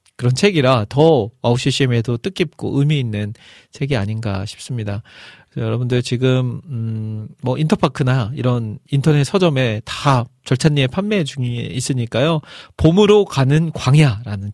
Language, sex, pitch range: Korean, male, 115-155 Hz